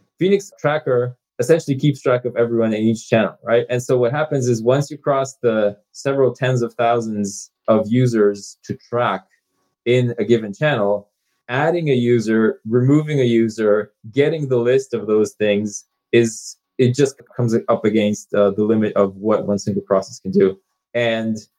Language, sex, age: English, male, 20-39